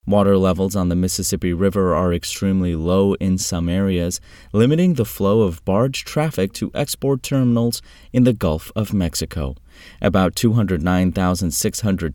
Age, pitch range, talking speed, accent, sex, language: 30-49, 85-110 Hz, 140 wpm, American, male, English